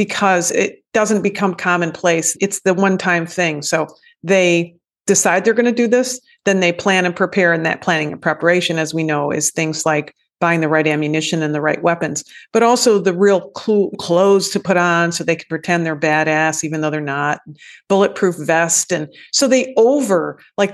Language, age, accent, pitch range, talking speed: English, 40-59, American, 160-200 Hz, 190 wpm